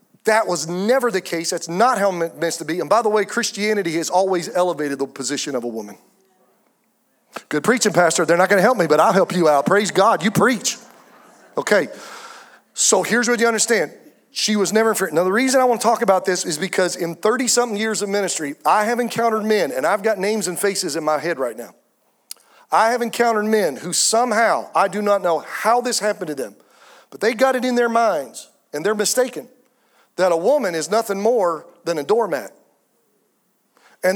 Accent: American